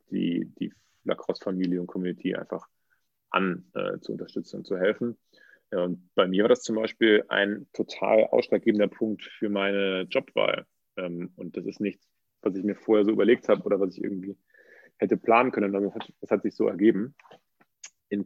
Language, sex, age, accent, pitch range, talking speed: German, male, 30-49, German, 90-105 Hz, 180 wpm